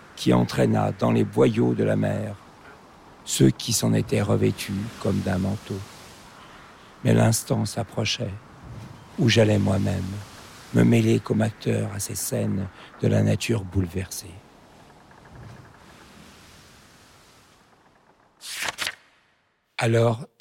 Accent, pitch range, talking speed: French, 105-120 Hz, 100 wpm